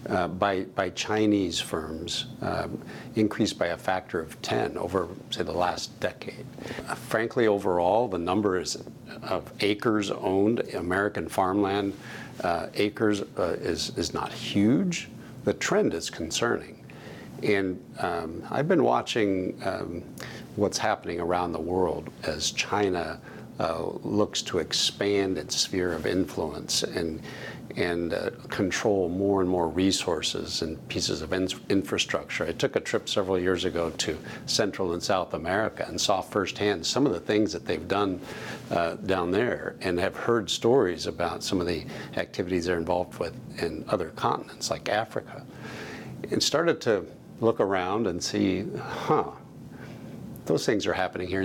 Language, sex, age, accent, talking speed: English, male, 60-79, American, 150 wpm